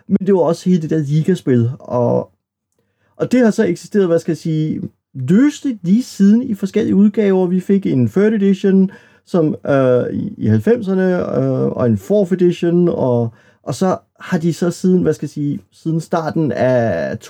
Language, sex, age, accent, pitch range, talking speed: Danish, male, 30-49, native, 120-160 Hz, 185 wpm